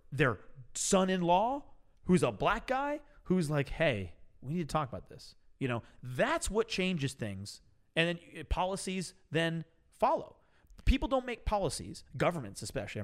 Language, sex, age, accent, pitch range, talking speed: English, male, 30-49, American, 120-175 Hz, 145 wpm